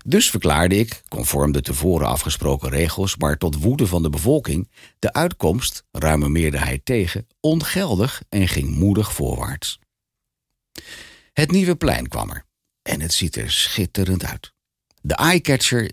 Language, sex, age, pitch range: Dutch, male, 60-79, 80-115 Hz